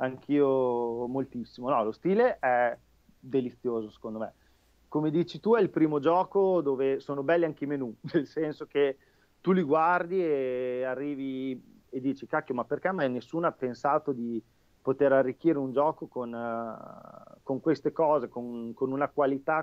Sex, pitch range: male, 125-150 Hz